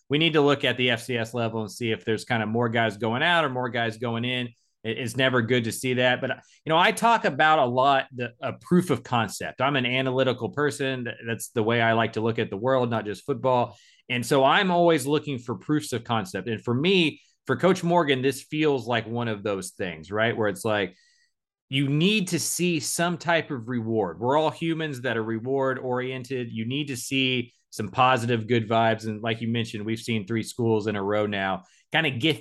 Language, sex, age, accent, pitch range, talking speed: English, male, 30-49, American, 110-145 Hz, 225 wpm